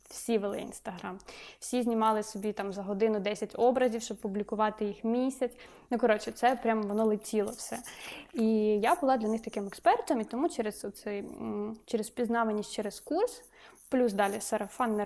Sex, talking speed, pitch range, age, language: female, 160 wpm, 210-240 Hz, 20-39, Ukrainian